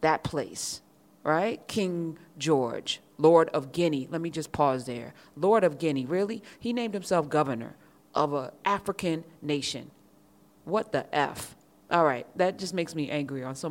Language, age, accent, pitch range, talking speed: English, 30-49, American, 150-225 Hz, 160 wpm